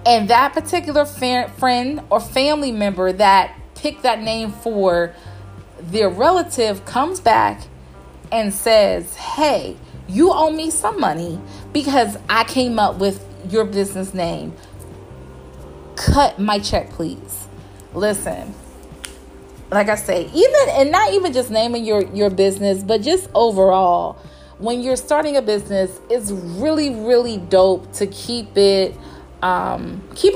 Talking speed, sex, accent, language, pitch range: 130 wpm, female, American, English, 180-245 Hz